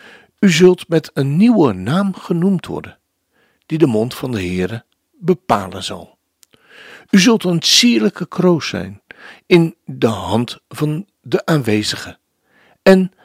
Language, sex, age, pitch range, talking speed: Dutch, male, 60-79, 120-190 Hz, 130 wpm